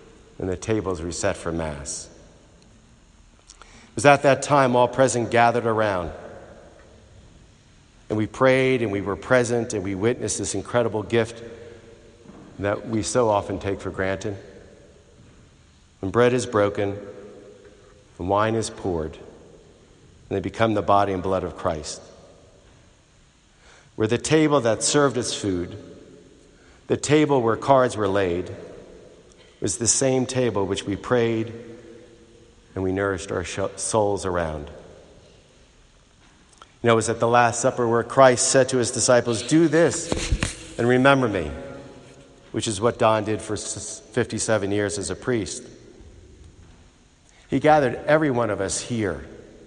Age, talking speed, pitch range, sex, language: 50-69, 140 wpm, 95-120 Hz, male, English